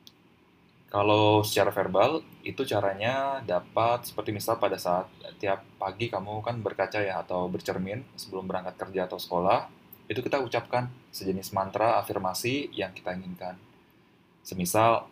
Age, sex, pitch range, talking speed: 20-39, male, 95-115 Hz, 130 wpm